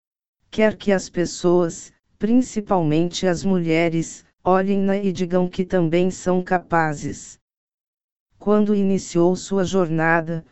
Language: Portuguese